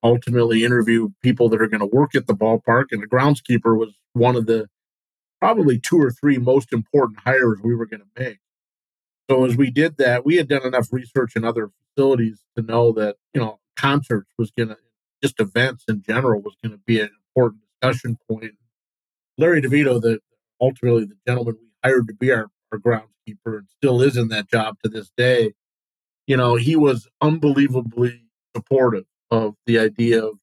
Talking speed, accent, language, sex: 185 wpm, American, English, male